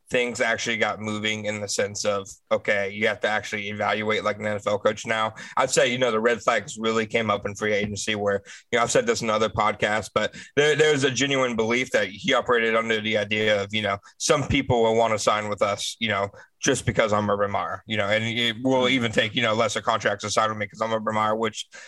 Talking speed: 245 wpm